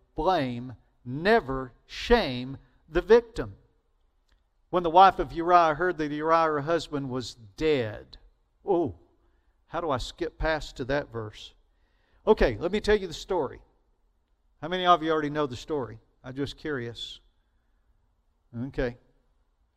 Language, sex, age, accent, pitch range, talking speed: English, male, 50-69, American, 130-185 Hz, 135 wpm